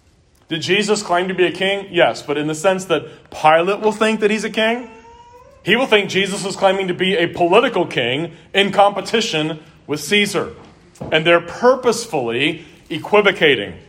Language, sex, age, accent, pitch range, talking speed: English, male, 30-49, American, 150-190 Hz, 170 wpm